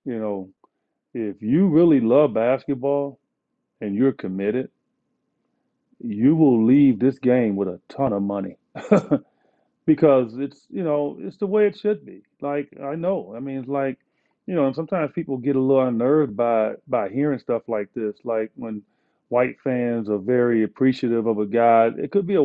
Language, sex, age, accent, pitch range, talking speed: English, male, 40-59, American, 120-170 Hz, 175 wpm